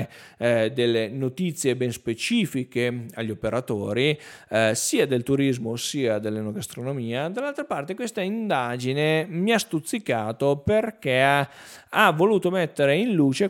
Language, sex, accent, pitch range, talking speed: Italian, male, native, 120-170 Hz, 120 wpm